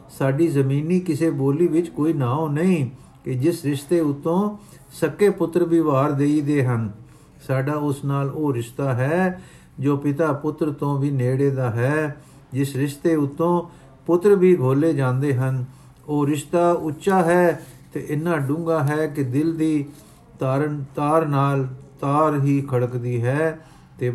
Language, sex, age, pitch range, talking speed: Punjabi, male, 50-69, 135-160 Hz, 145 wpm